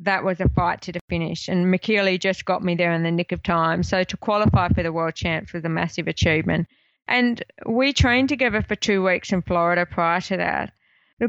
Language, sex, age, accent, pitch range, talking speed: English, female, 20-39, Australian, 175-205 Hz, 225 wpm